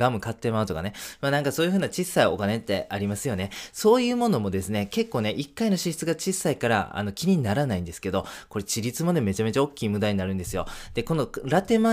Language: Japanese